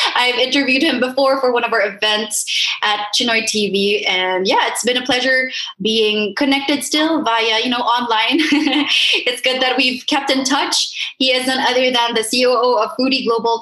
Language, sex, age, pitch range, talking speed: English, female, 20-39, 210-275 Hz, 185 wpm